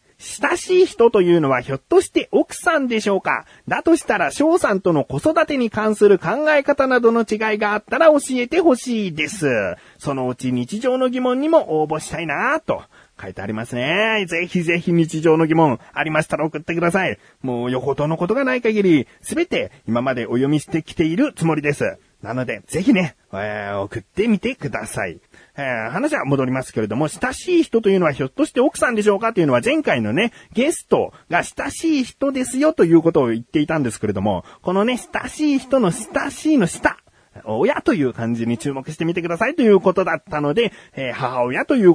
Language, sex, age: Japanese, male, 40-59